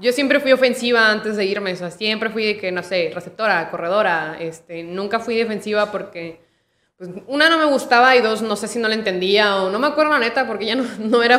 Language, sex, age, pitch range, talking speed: Spanish, female, 20-39, 185-230 Hz, 240 wpm